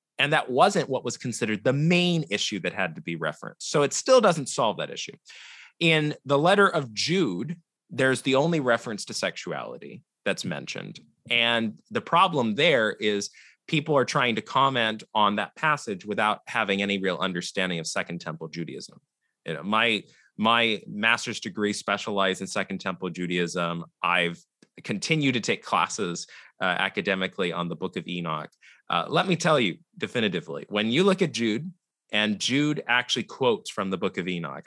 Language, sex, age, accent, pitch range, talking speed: English, male, 30-49, American, 100-160 Hz, 170 wpm